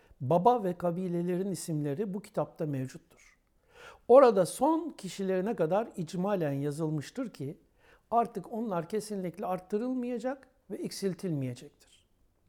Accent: native